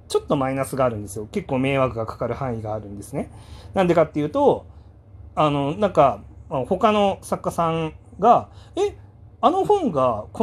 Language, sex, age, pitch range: Japanese, male, 30-49, 115-160 Hz